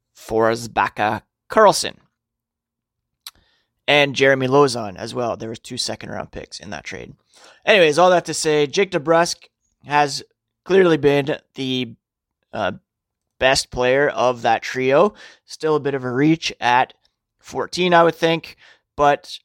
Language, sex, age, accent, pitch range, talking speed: English, male, 30-49, American, 125-155 Hz, 140 wpm